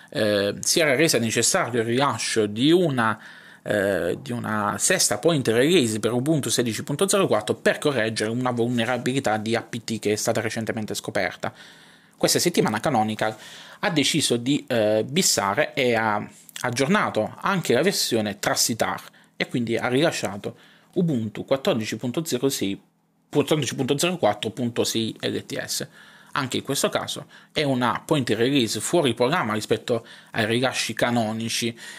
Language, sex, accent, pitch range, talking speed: Italian, male, native, 110-150 Hz, 120 wpm